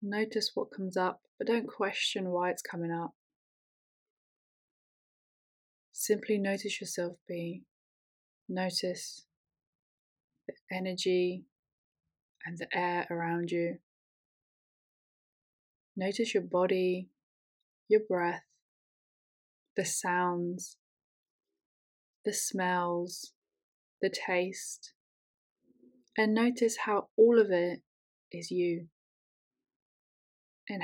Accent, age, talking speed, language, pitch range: British, 20-39, 85 wpm, English, 175-210 Hz